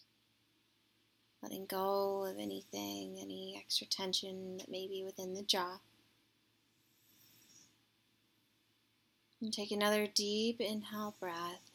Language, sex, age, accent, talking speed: English, female, 20-39, American, 95 wpm